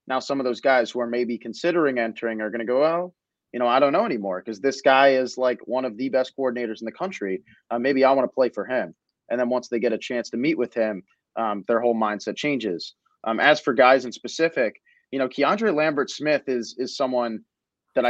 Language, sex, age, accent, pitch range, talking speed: English, male, 30-49, American, 115-135 Hz, 240 wpm